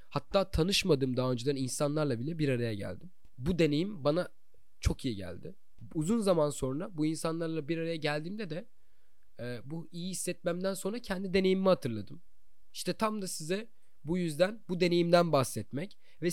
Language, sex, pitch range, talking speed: Turkish, male, 135-175 Hz, 155 wpm